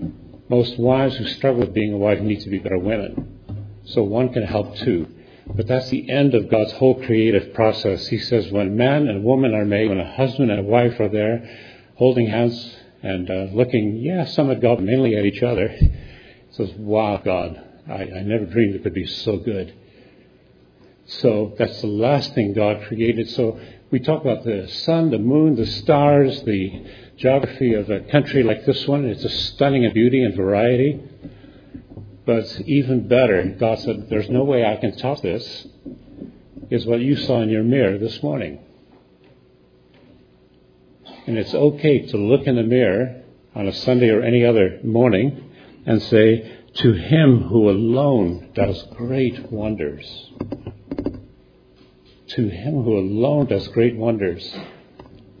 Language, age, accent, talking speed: English, 70-89, American, 165 wpm